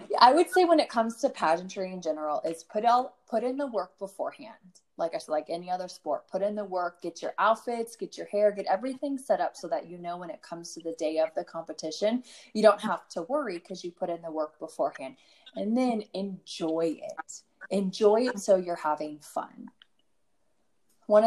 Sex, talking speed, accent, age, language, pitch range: female, 210 wpm, American, 20-39, English, 160-210 Hz